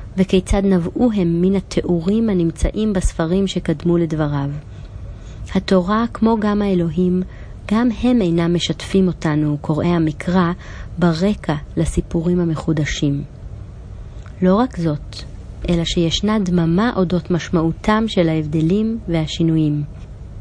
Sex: female